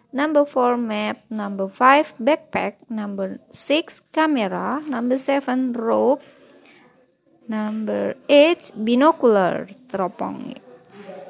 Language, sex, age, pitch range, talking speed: Indonesian, female, 20-39, 205-270 Hz, 85 wpm